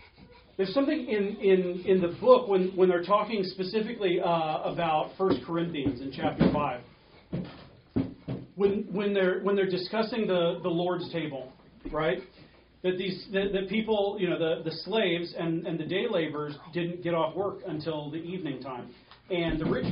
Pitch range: 160-200 Hz